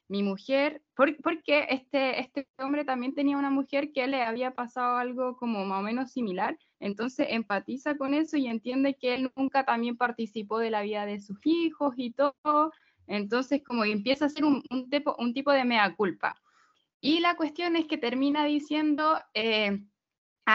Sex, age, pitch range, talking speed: female, 10-29, 215-295 Hz, 175 wpm